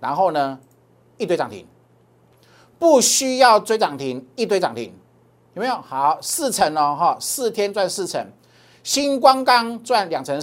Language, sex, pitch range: Chinese, male, 150-220 Hz